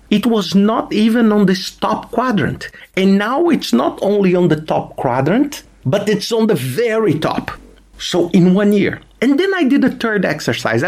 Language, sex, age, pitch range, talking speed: English, male, 50-69, 155-225 Hz, 190 wpm